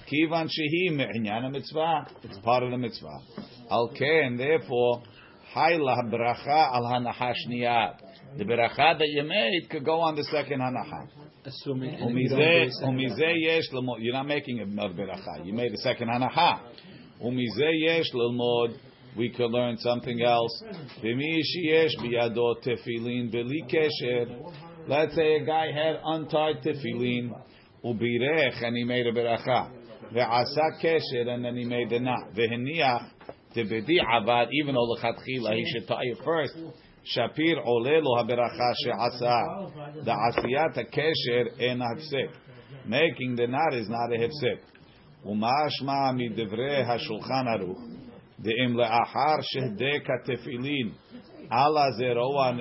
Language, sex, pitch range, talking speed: English, male, 120-155 Hz, 130 wpm